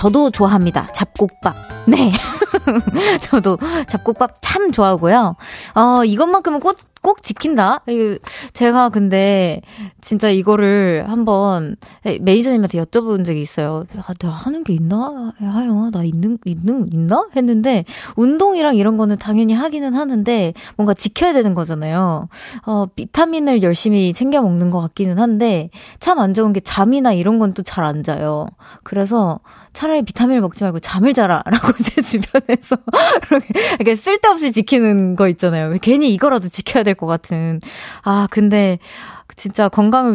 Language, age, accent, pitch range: Korean, 20-39, native, 185-255 Hz